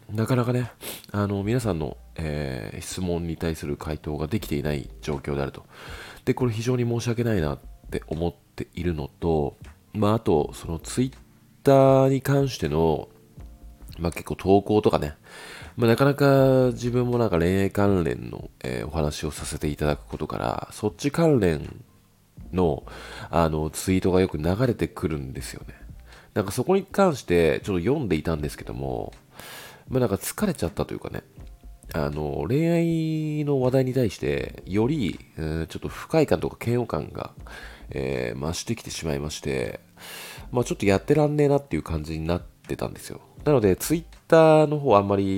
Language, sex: Japanese, male